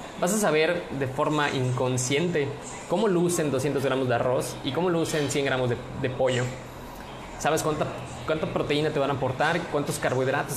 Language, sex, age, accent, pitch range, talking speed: Spanish, male, 20-39, Mexican, 125-145 Hz, 170 wpm